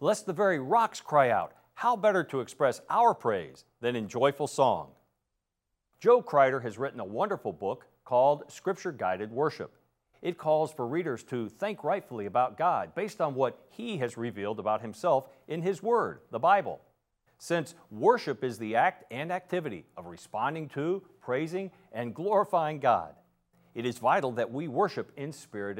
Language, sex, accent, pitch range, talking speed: English, male, American, 120-180 Hz, 165 wpm